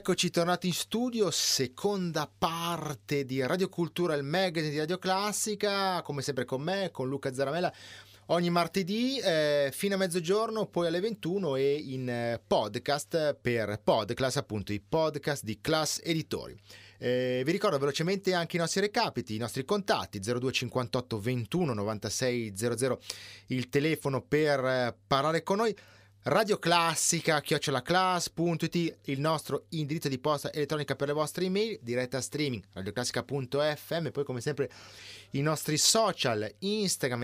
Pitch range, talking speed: 120-170 Hz, 140 wpm